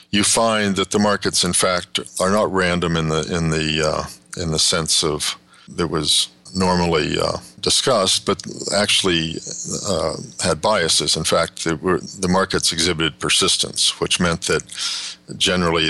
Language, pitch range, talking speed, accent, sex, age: English, 80-95 Hz, 150 wpm, American, male, 50-69